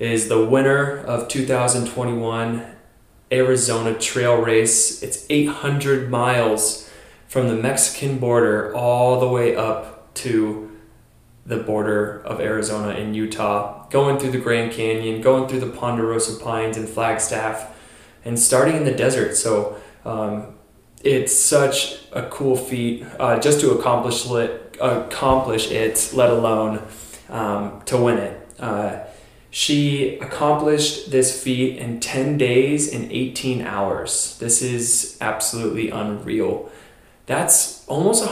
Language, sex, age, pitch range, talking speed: English, male, 20-39, 110-130 Hz, 125 wpm